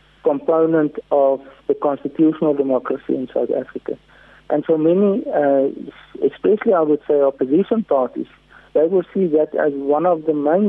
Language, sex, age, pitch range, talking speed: English, male, 50-69, 135-155 Hz, 150 wpm